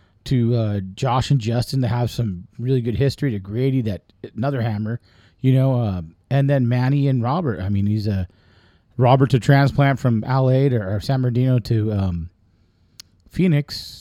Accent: American